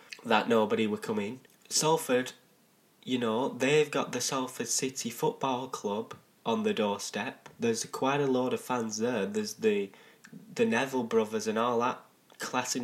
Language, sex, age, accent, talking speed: English, male, 10-29, British, 160 wpm